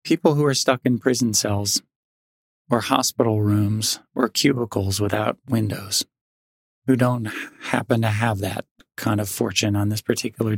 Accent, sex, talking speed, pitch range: American, male, 145 wpm, 110-130 Hz